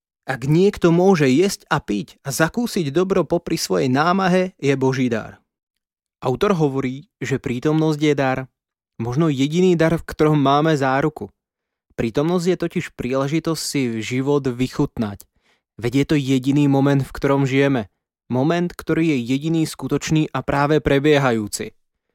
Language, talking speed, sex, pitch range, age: Slovak, 140 wpm, male, 125-150 Hz, 20-39